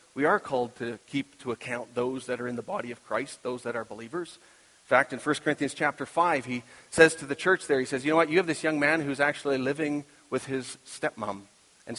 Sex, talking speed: male, 245 wpm